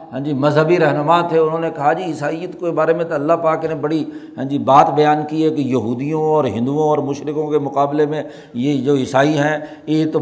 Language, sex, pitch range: Urdu, male, 145-175 Hz